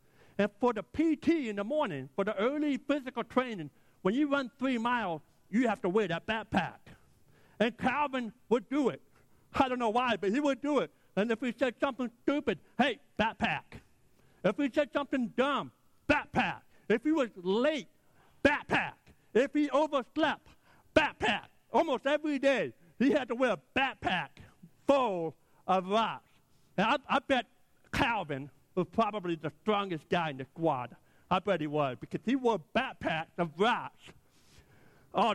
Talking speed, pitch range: 165 wpm, 150-250 Hz